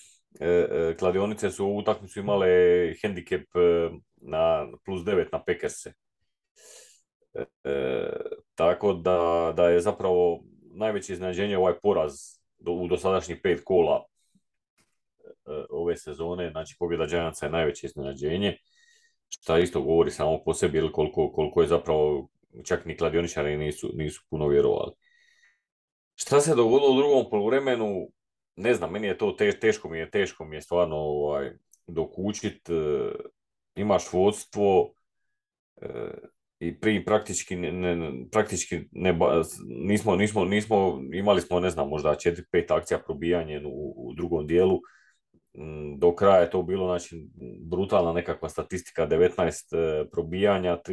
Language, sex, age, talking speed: Croatian, male, 30-49, 125 wpm